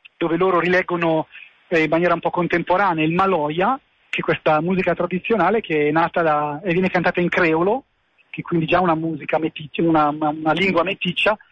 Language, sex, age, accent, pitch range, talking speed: Italian, male, 40-59, native, 155-180 Hz, 195 wpm